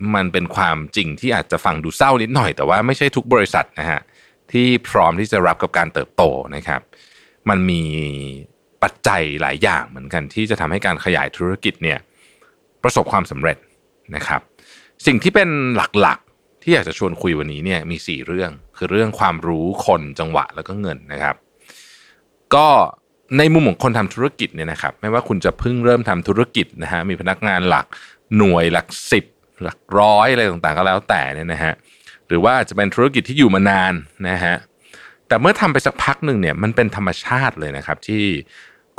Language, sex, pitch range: Thai, male, 85-120 Hz